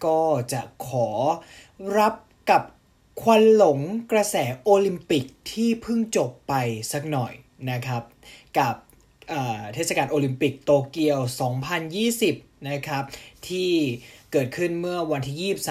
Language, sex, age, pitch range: Thai, male, 20-39, 125-185 Hz